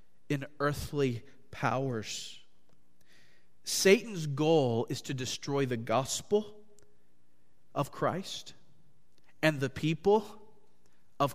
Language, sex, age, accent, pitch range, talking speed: English, male, 40-59, American, 105-145 Hz, 85 wpm